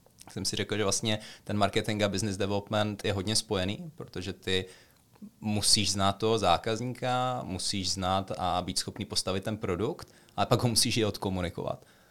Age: 30-49